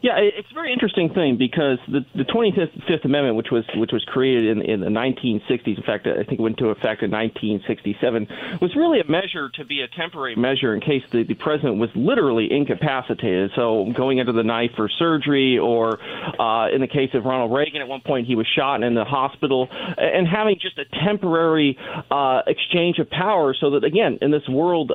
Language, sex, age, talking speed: English, male, 40-59, 210 wpm